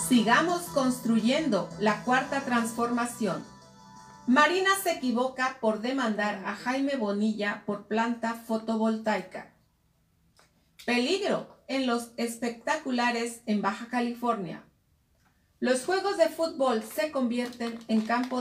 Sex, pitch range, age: female, 225-275 Hz, 40-59